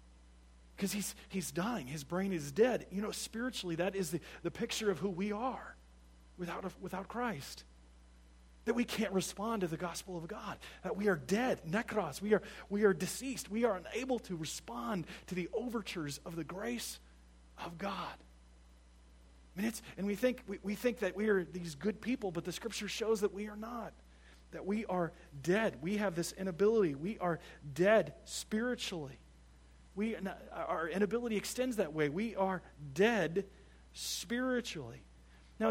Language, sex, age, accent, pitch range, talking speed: English, male, 40-59, American, 140-205 Hz, 170 wpm